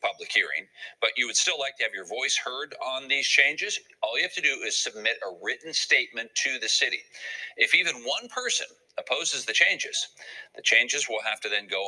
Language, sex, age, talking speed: English, male, 40-59, 210 wpm